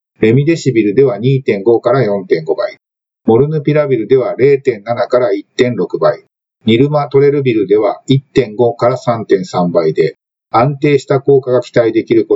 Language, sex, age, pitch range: Japanese, male, 50-69, 120-155 Hz